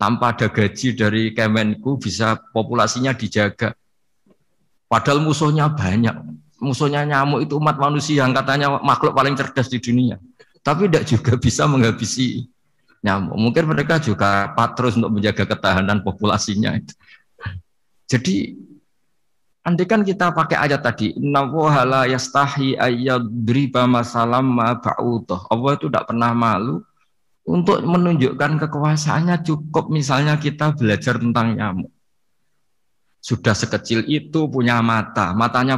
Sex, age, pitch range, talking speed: male, 50-69, 110-150 Hz, 105 wpm